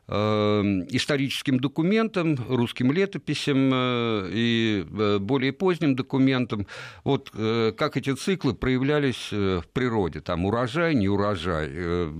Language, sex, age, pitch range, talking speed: Russian, male, 50-69, 100-140 Hz, 95 wpm